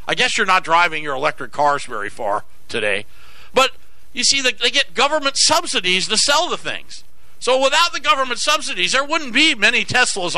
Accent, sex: American, male